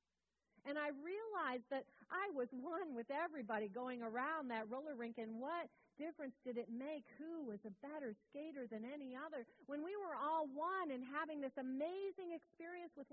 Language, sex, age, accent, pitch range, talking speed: English, female, 40-59, American, 230-310 Hz, 180 wpm